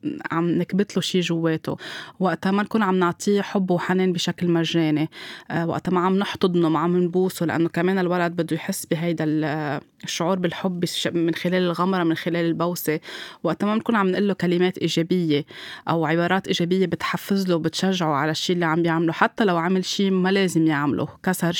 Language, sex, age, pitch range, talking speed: Arabic, female, 20-39, 170-190 Hz, 170 wpm